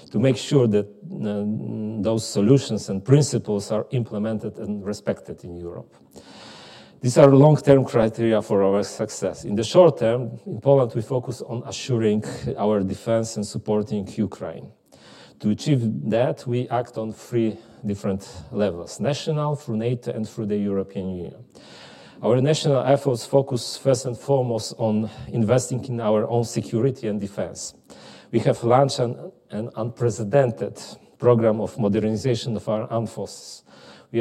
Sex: male